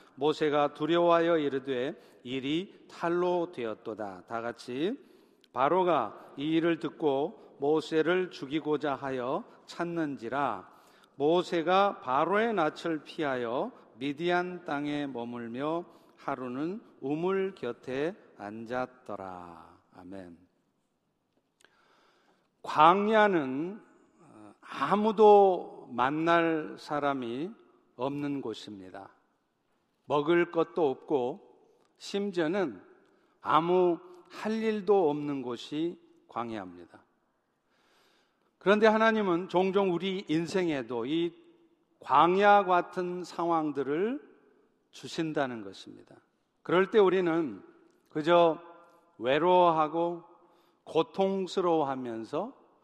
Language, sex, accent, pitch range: Korean, male, native, 140-190 Hz